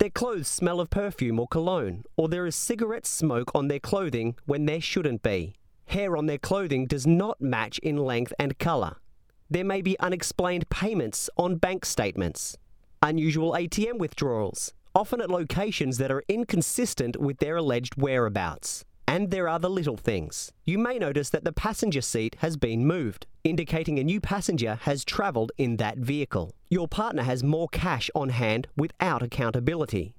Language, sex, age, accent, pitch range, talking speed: English, male, 30-49, Australian, 125-175 Hz, 170 wpm